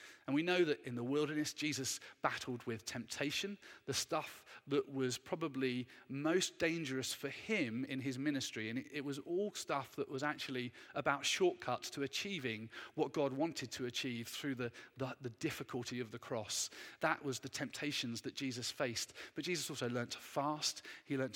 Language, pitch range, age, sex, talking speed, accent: English, 125-150 Hz, 40-59, male, 175 wpm, British